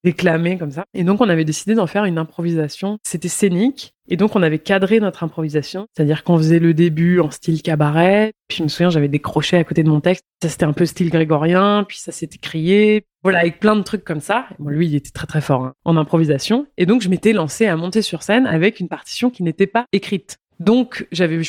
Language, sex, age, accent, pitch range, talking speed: French, female, 20-39, French, 160-205 Hz, 240 wpm